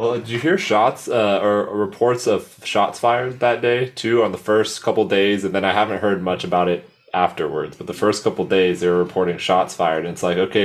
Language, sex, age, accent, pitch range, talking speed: English, male, 20-39, American, 90-110 Hz, 235 wpm